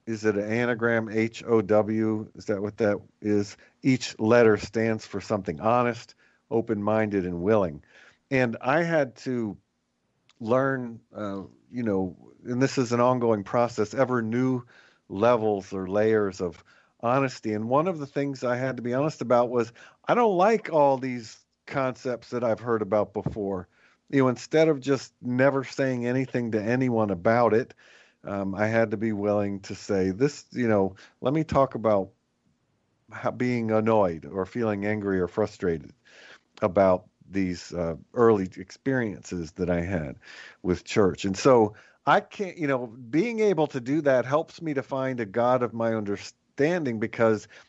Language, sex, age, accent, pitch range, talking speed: English, male, 50-69, American, 105-130 Hz, 160 wpm